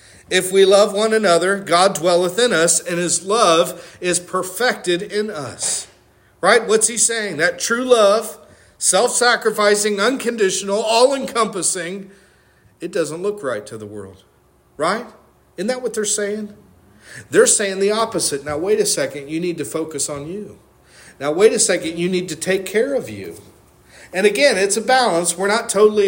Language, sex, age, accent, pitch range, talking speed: English, male, 50-69, American, 165-210 Hz, 165 wpm